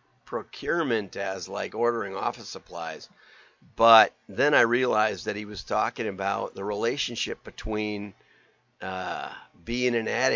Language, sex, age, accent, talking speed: English, male, 50-69, American, 125 wpm